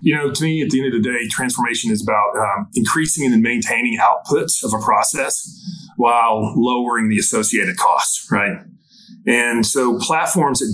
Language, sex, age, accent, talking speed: English, male, 30-49, American, 175 wpm